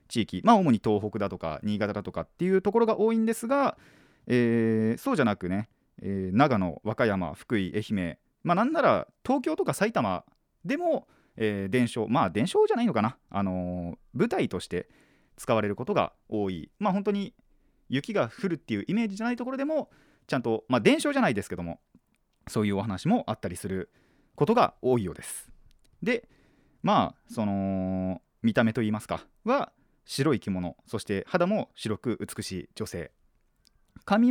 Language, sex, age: Japanese, male, 30-49